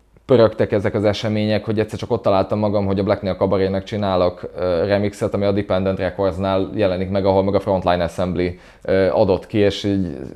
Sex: male